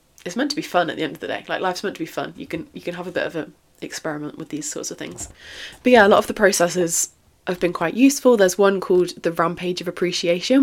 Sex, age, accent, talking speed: female, 20-39, British, 280 wpm